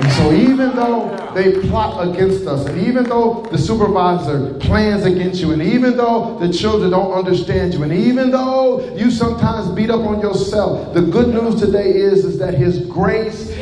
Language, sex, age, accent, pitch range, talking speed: English, male, 40-59, American, 160-225 Hz, 180 wpm